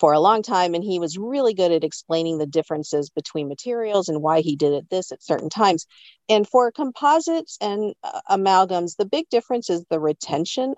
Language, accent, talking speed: English, American, 200 wpm